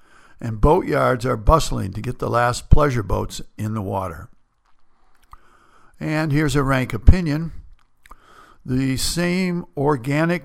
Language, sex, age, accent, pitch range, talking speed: English, male, 60-79, American, 110-145 Hz, 120 wpm